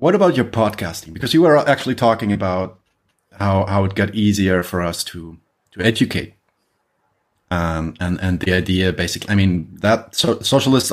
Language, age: German, 30-49